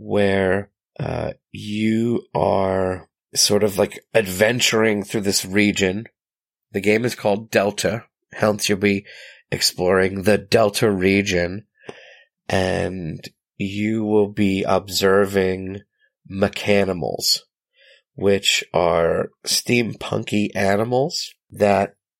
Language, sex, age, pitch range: English, male, 30-49, 95-110 Hz